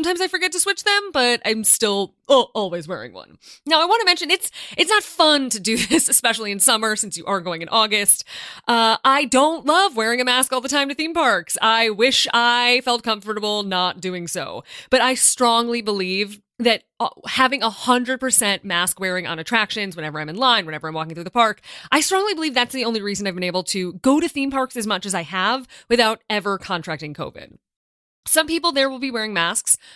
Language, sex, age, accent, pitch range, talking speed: English, female, 20-39, American, 195-275 Hz, 220 wpm